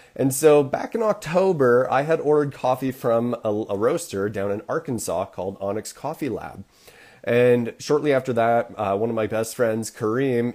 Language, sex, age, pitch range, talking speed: English, male, 30-49, 110-140 Hz, 175 wpm